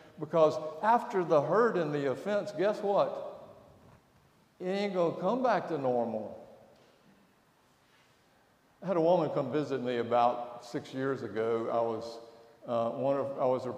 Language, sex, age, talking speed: English, male, 60-79, 155 wpm